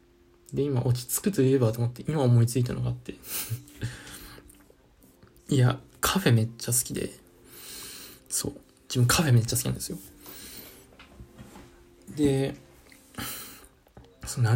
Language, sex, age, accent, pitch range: Japanese, male, 20-39, native, 95-130 Hz